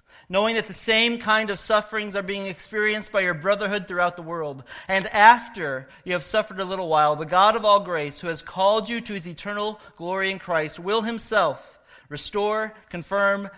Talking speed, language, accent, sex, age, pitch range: 190 wpm, English, American, male, 40-59, 145-195 Hz